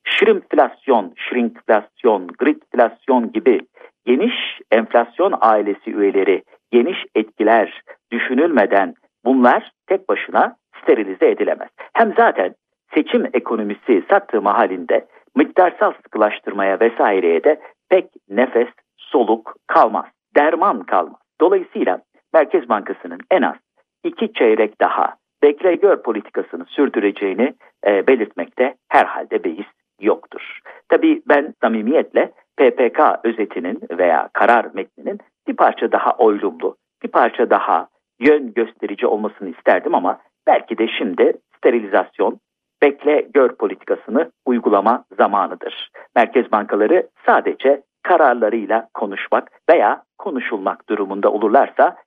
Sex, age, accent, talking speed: male, 50-69, native, 100 wpm